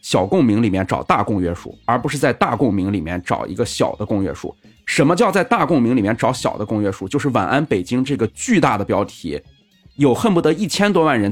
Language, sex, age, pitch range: Chinese, male, 30-49, 105-155 Hz